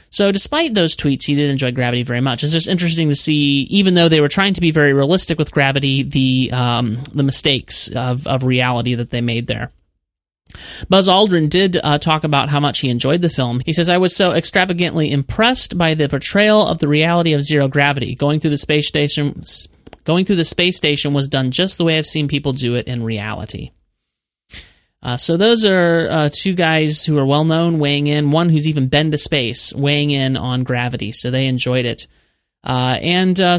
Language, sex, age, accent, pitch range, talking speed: English, male, 30-49, American, 130-165 Hz, 205 wpm